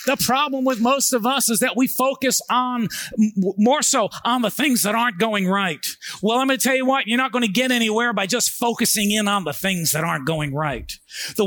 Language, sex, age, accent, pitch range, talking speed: English, male, 40-59, American, 215-265 Hz, 235 wpm